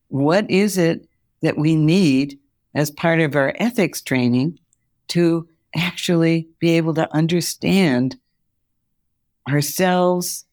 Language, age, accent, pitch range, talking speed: English, 60-79, American, 125-150 Hz, 110 wpm